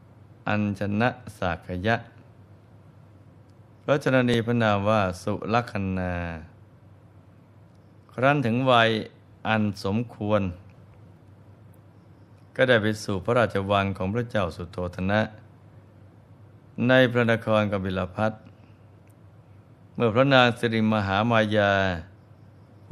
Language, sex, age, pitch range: Thai, male, 20-39, 100-110 Hz